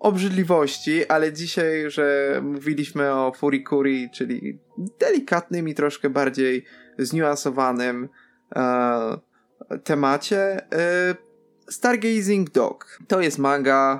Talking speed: 90 wpm